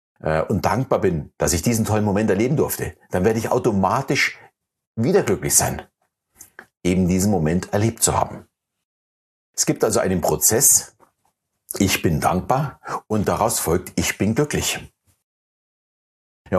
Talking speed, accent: 140 wpm, German